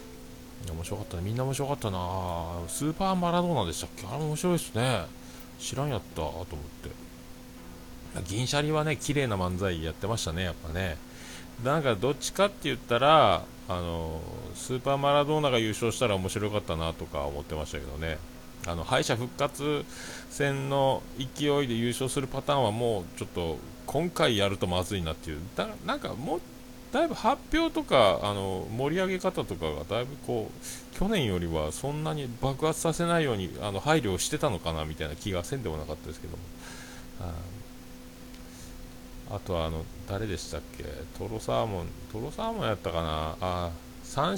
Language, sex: Japanese, male